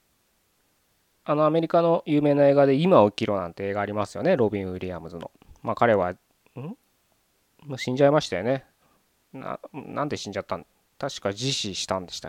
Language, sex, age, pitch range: Japanese, male, 20-39, 95-125 Hz